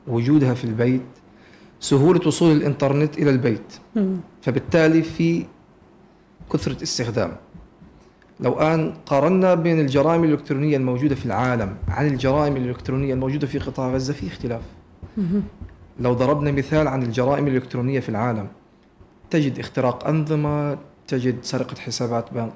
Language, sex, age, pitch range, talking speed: Arabic, male, 40-59, 125-155 Hz, 115 wpm